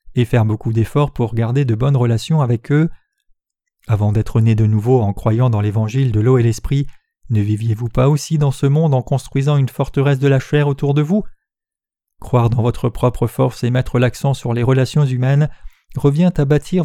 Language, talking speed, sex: French, 200 wpm, male